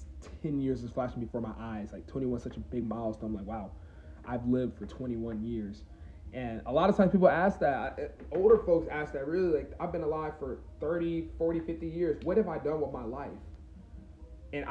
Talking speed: 205 wpm